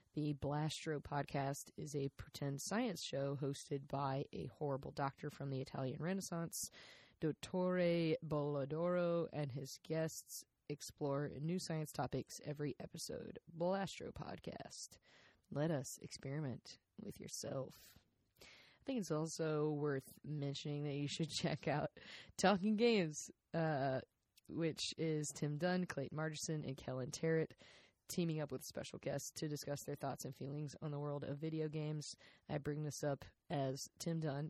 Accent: American